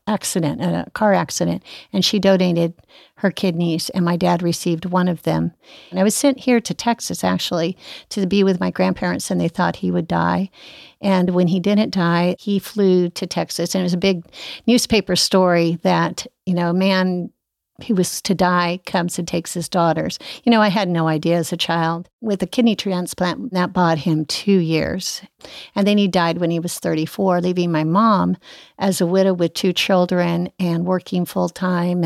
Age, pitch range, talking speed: 50-69, 175-210 Hz, 195 wpm